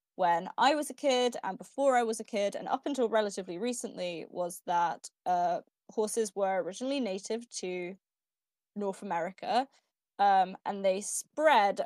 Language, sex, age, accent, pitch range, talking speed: English, female, 20-39, British, 190-240 Hz, 150 wpm